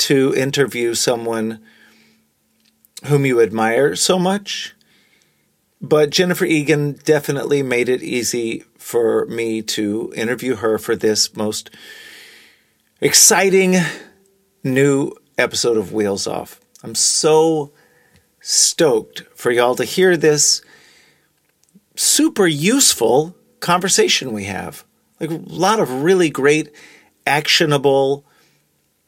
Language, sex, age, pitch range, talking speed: English, male, 40-59, 110-155 Hz, 100 wpm